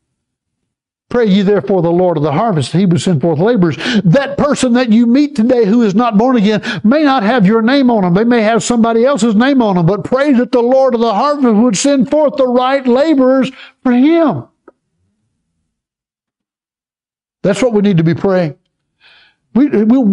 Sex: male